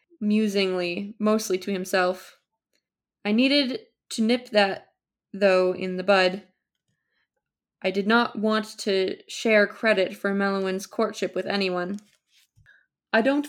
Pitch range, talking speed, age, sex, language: 185-230 Hz, 120 wpm, 20-39, female, English